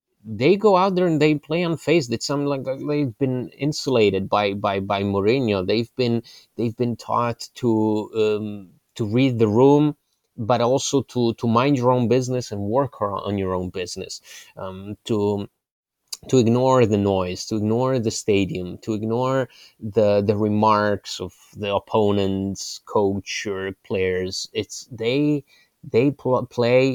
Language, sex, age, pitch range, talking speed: English, male, 30-49, 105-125 Hz, 155 wpm